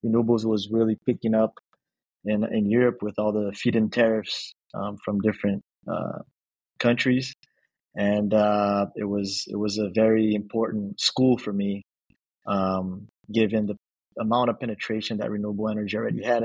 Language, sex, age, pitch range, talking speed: English, male, 20-39, 105-115 Hz, 150 wpm